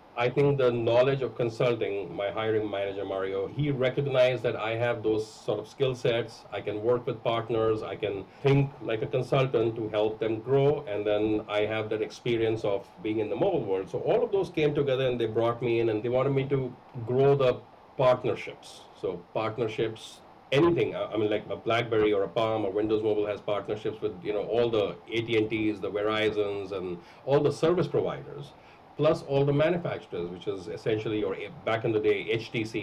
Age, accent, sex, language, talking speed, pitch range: 40-59, Indian, male, English, 195 wpm, 110-130 Hz